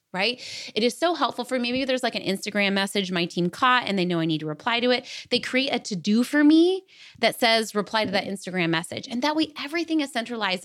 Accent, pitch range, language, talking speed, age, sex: American, 190-260 Hz, English, 250 wpm, 20-39, female